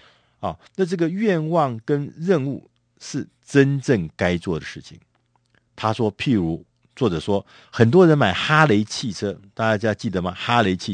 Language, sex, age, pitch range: Chinese, male, 50-69, 95-140 Hz